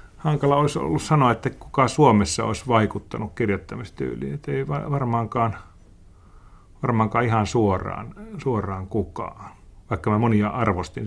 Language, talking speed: Finnish, 120 wpm